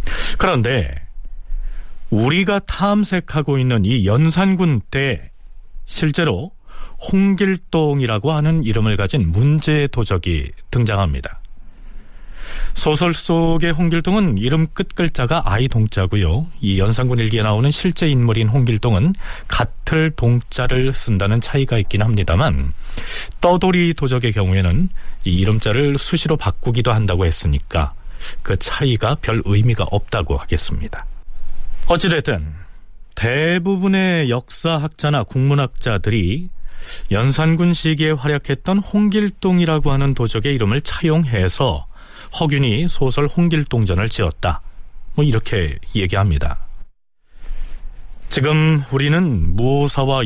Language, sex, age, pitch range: Korean, male, 40-59, 100-155 Hz